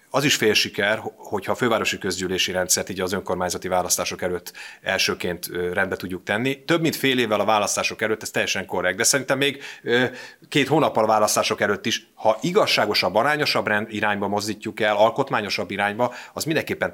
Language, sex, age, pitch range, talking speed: Hungarian, male, 30-49, 95-125 Hz, 165 wpm